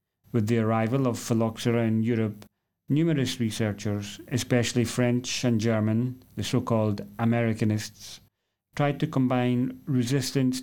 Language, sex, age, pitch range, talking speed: English, male, 30-49, 105-130 Hz, 115 wpm